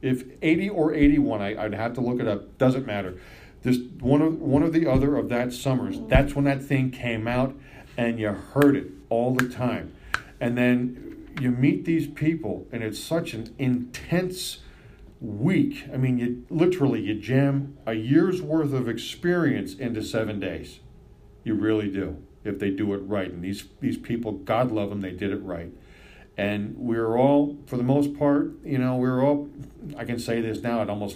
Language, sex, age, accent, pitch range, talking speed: English, male, 50-69, American, 105-135 Hz, 195 wpm